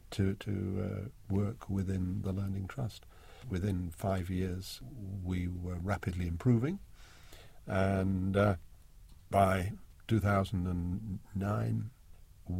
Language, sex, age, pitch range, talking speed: English, male, 50-69, 90-110 Hz, 90 wpm